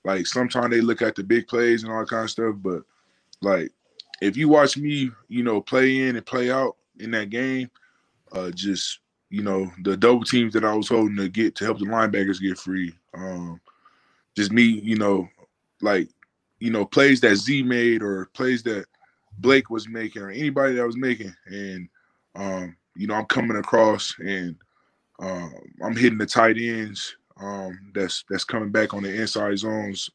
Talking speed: 190 wpm